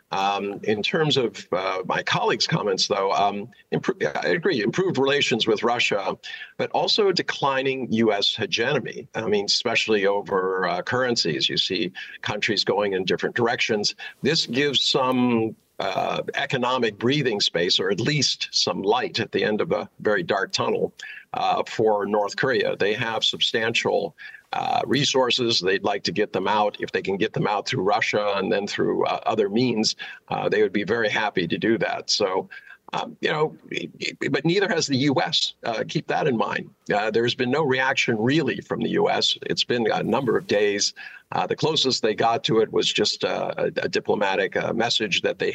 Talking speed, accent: 180 wpm, American